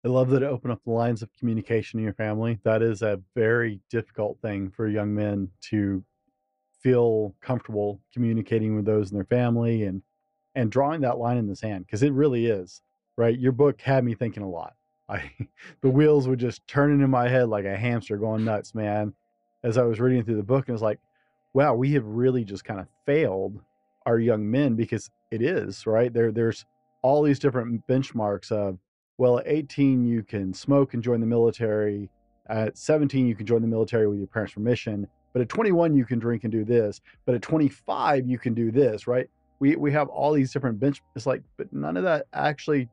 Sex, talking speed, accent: male, 210 wpm, American